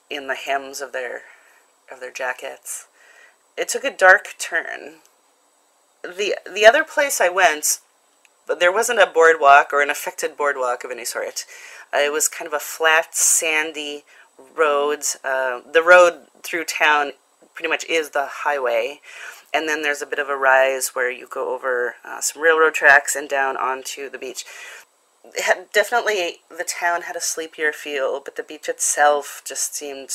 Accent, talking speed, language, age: American, 165 wpm, English, 30-49